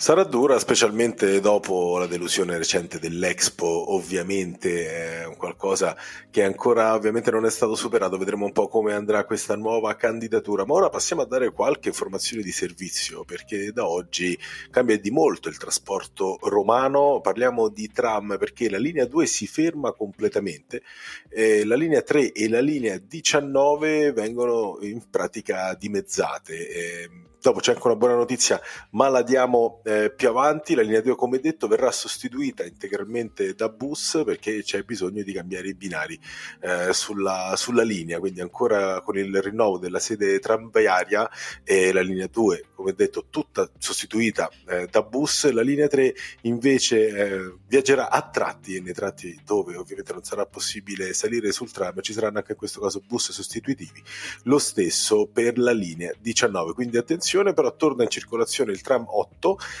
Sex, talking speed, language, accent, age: male, 160 wpm, Italian, native, 30-49